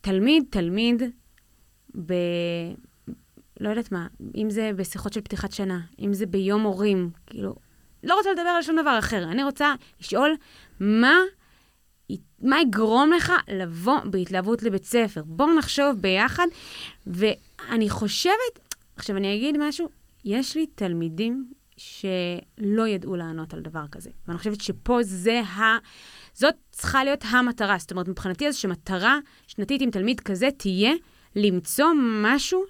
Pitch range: 195-280 Hz